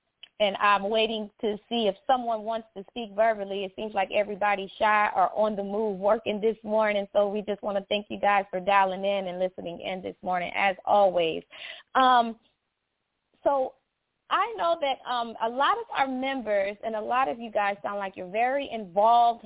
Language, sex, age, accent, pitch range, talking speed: English, female, 20-39, American, 205-260 Hz, 195 wpm